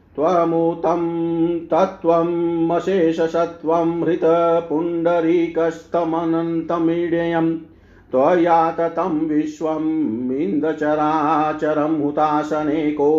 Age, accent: 50-69, native